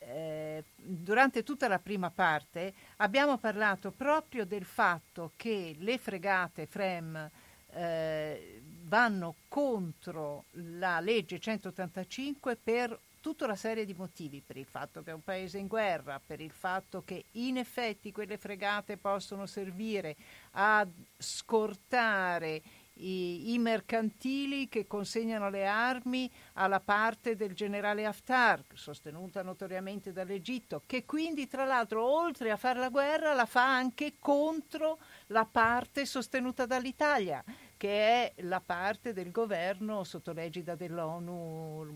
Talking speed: 125 wpm